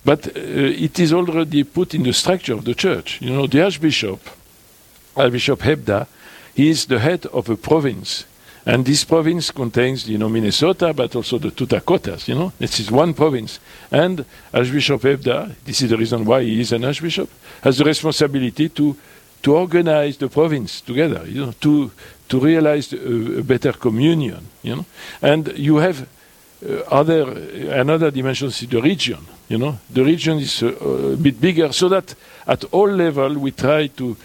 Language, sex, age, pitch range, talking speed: English, male, 60-79, 120-155 Hz, 180 wpm